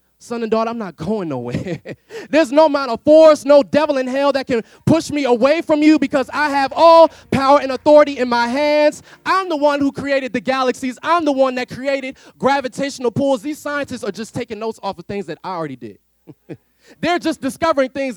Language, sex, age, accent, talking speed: English, male, 20-39, American, 210 wpm